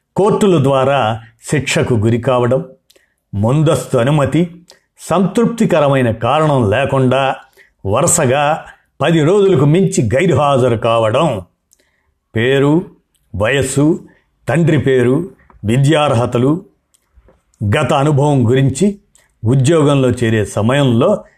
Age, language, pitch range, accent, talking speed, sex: 50-69, Telugu, 125-160 Hz, native, 75 wpm, male